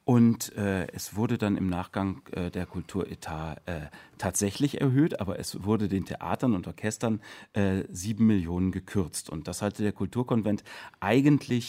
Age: 40-59